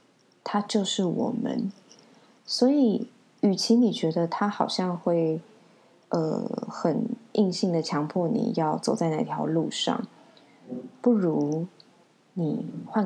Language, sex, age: Chinese, female, 20-39